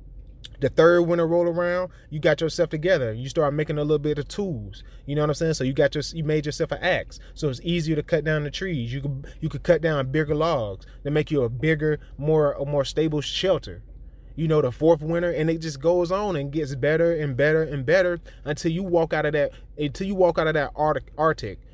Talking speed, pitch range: 245 wpm, 145-180 Hz